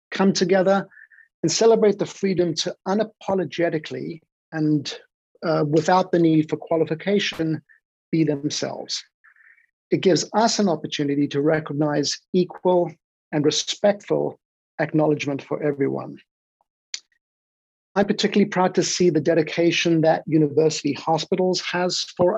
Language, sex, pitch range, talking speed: English, male, 155-185 Hz, 115 wpm